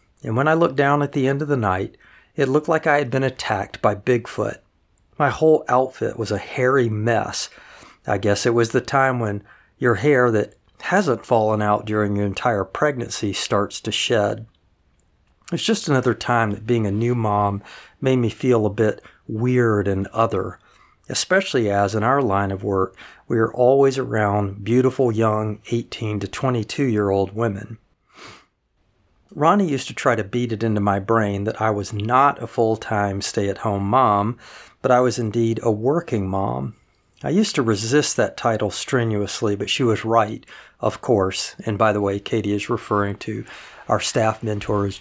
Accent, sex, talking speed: American, male, 175 wpm